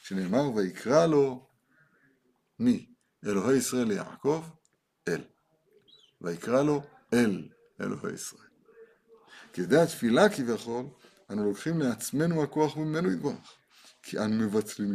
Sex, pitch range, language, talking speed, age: male, 120-160 Hz, Hebrew, 100 wpm, 60-79